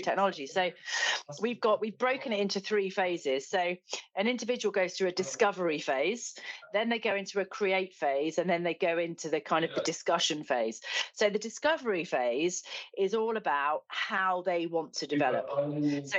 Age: 40-59